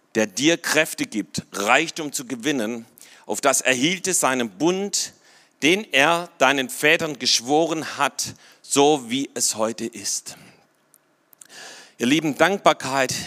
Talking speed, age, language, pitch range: 120 wpm, 40-59, German, 140-180 Hz